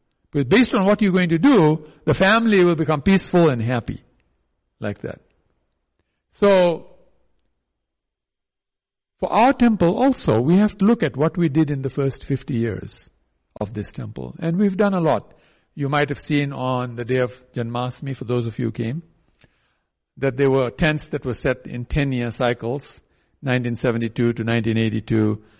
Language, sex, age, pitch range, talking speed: English, male, 60-79, 110-170 Hz, 165 wpm